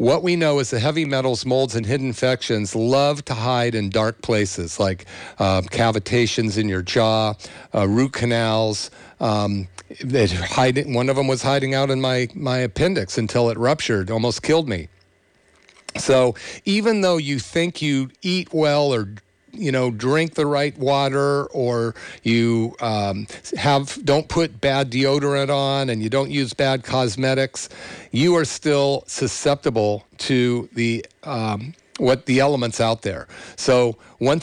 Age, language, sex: 50-69, English, male